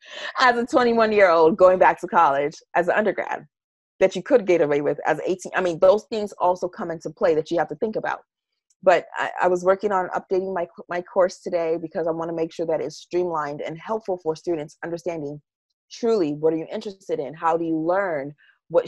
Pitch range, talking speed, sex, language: 160-190 Hz, 225 wpm, female, English